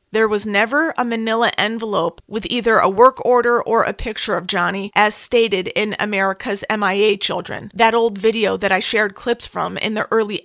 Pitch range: 210-260 Hz